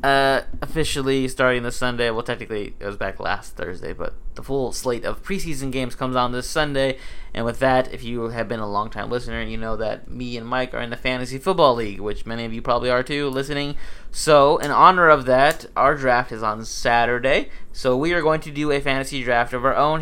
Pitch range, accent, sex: 110-135 Hz, American, male